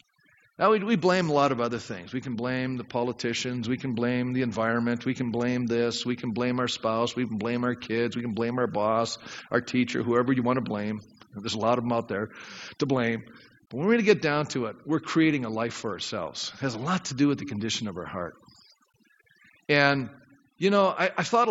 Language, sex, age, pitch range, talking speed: English, male, 50-69, 125-195 Hz, 230 wpm